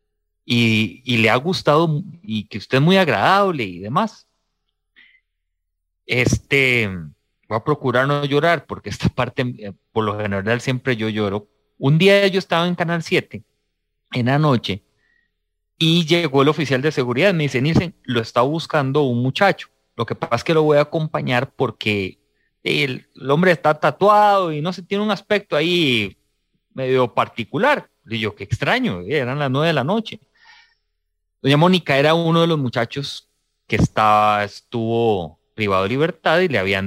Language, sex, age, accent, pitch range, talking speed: English, male, 30-49, Mexican, 105-150 Hz, 165 wpm